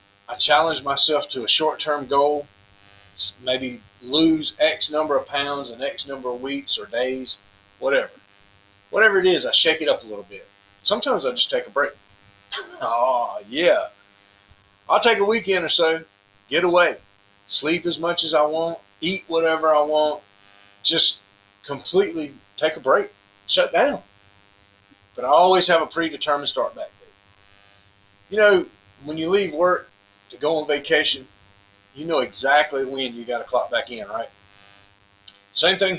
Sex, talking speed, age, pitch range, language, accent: male, 160 wpm, 40-59, 100-155 Hz, English, American